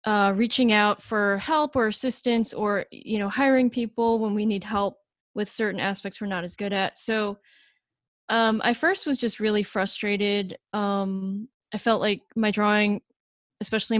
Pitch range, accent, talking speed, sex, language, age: 200-230 Hz, American, 165 wpm, female, English, 10-29